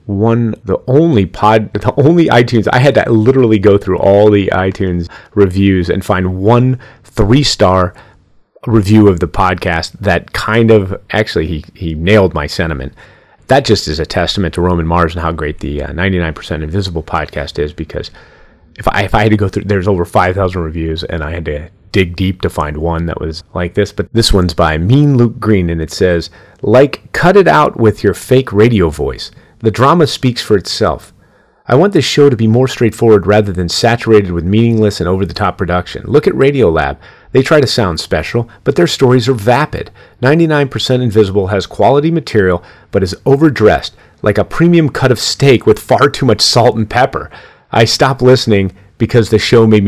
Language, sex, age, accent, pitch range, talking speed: English, male, 30-49, American, 90-120 Hz, 190 wpm